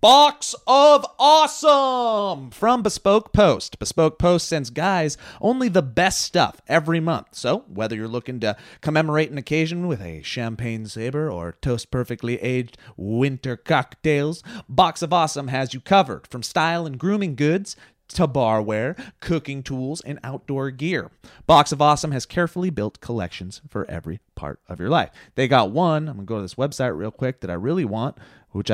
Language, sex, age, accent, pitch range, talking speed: English, male, 30-49, American, 125-185 Hz, 165 wpm